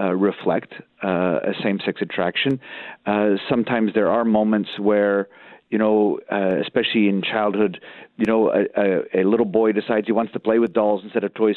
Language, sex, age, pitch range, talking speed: English, male, 40-59, 105-125 Hz, 180 wpm